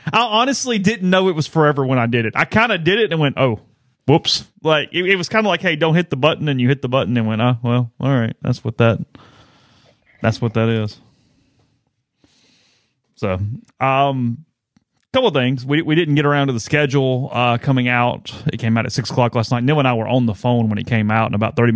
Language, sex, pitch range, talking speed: English, male, 110-140 Hz, 245 wpm